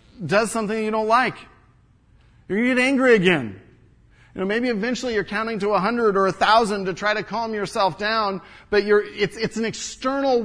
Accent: American